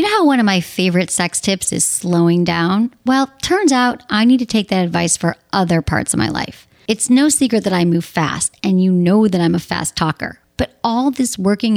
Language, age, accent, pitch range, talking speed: English, 30-49, American, 185-250 Hz, 235 wpm